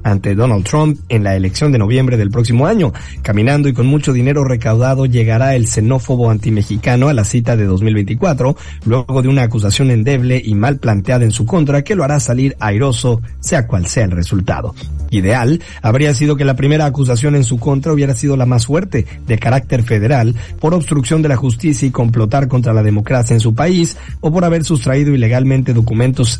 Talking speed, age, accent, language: 190 wpm, 50-69, Mexican, Spanish